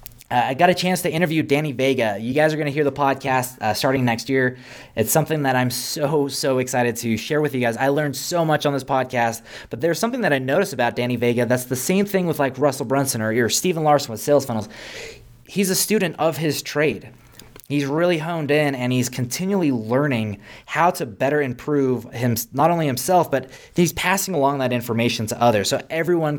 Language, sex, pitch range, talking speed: English, male, 120-150 Hz, 220 wpm